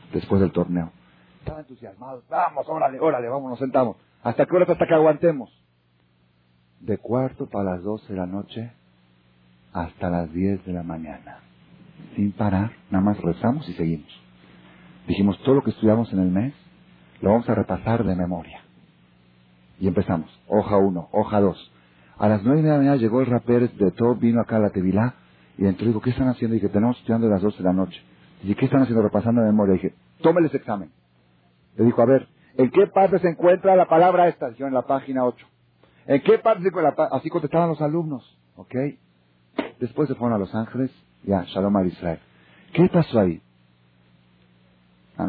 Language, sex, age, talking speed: Spanish, male, 40-59, 190 wpm